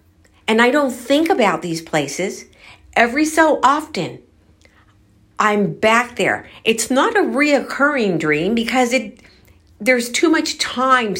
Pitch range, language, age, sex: 170-255 Hz, English, 50-69, female